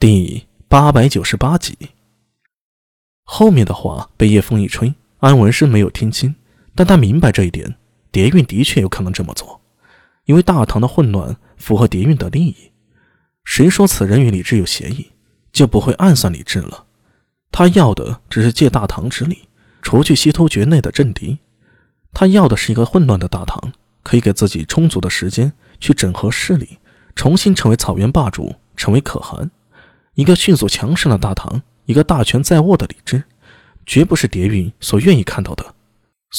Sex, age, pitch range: male, 20-39, 105-150 Hz